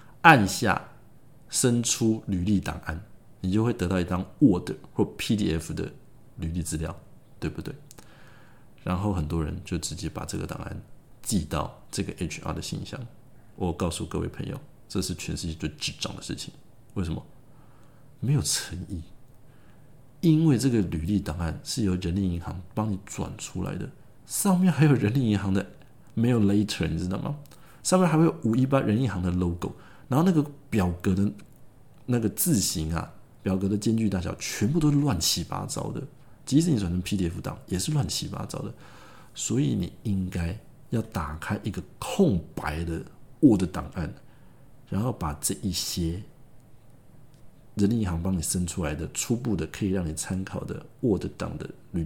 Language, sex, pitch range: Chinese, male, 90-130 Hz